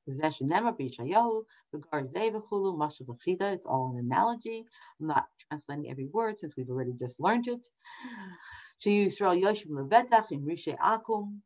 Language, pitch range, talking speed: English, 145-225 Hz, 110 wpm